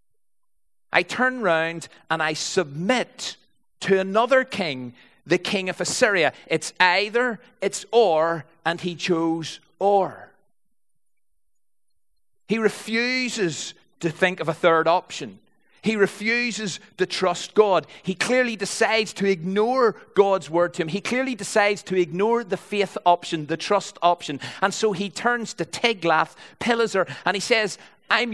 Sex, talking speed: male, 140 wpm